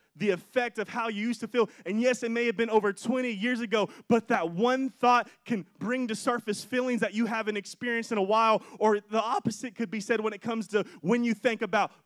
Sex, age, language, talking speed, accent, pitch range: male, 20-39, English, 240 wpm, American, 205-245 Hz